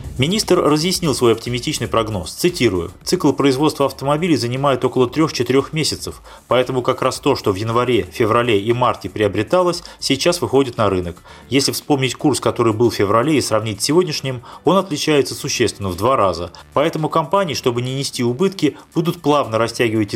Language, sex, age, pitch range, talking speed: Russian, male, 30-49, 115-145 Hz, 160 wpm